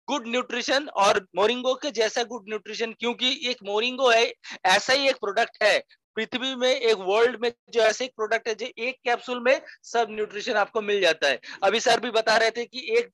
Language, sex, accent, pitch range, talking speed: Hindi, male, native, 205-245 Hz, 205 wpm